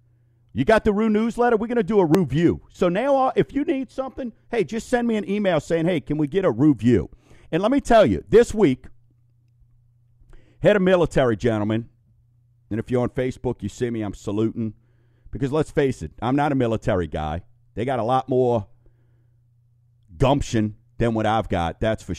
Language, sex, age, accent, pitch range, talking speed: English, male, 50-69, American, 110-130 Hz, 195 wpm